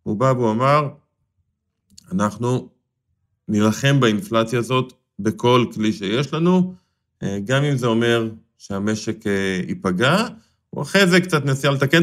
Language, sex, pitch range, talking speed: Hebrew, male, 105-140 Hz, 120 wpm